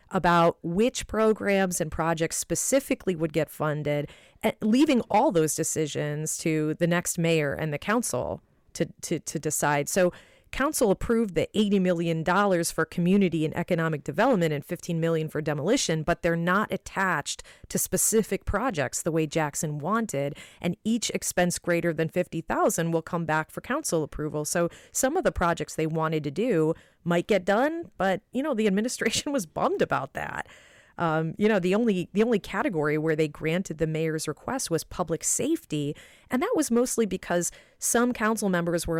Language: English